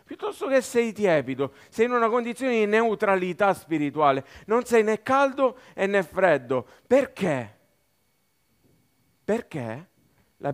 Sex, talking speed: male, 120 wpm